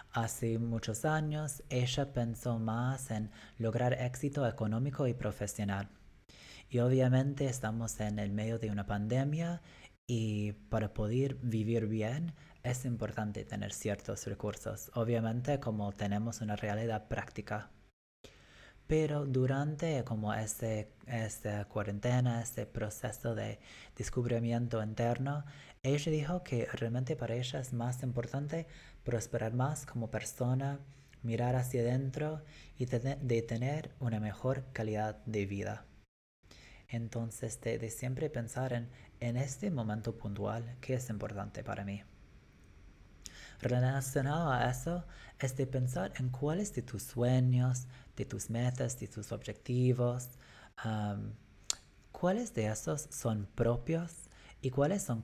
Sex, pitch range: male, 110-130 Hz